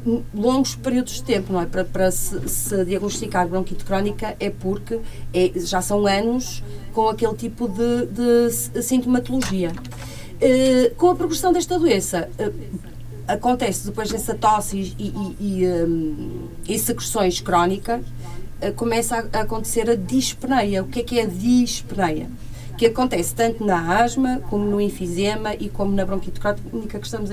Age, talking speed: 40-59, 160 wpm